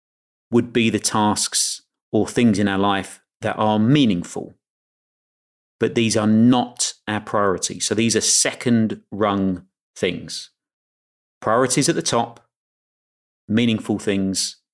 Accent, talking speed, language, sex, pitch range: British, 120 wpm, English, male, 105-125 Hz